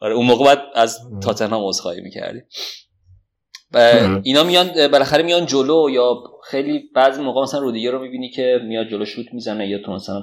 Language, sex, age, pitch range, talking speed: Persian, male, 30-49, 100-125 Hz, 160 wpm